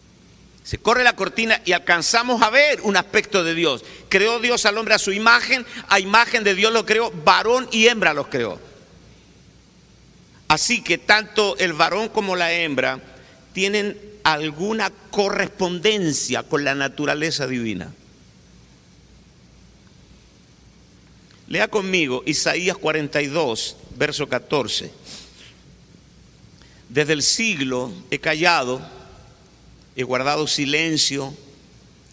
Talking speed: 110 wpm